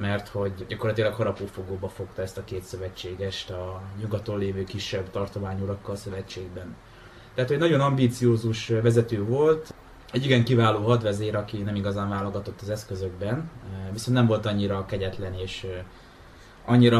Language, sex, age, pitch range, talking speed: Hungarian, male, 20-39, 95-115 Hz, 140 wpm